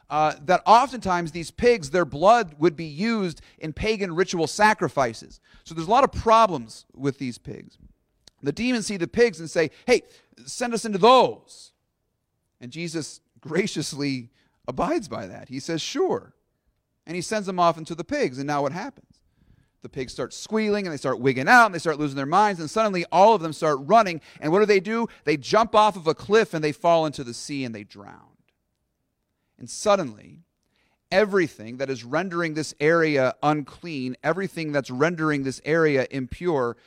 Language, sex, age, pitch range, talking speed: English, male, 40-59, 125-185 Hz, 185 wpm